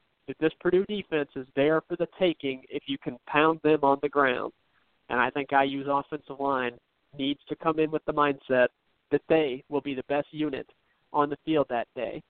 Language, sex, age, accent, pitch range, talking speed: English, male, 40-59, American, 140-165 Hz, 200 wpm